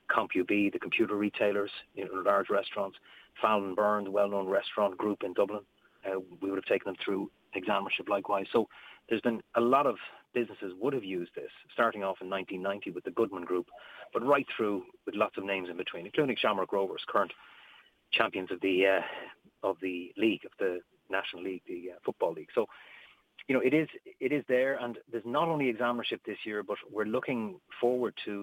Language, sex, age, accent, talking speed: English, male, 30-49, Irish, 195 wpm